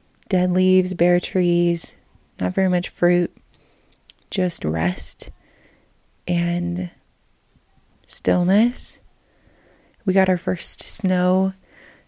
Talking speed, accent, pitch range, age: 85 wpm, American, 180-210 Hz, 30-49